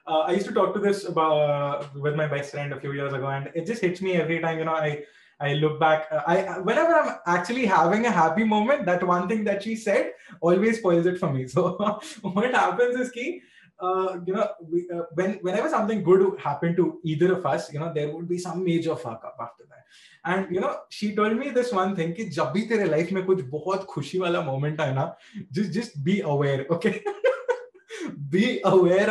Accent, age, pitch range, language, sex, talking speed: Indian, 20-39, 150-210 Hz, English, male, 210 wpm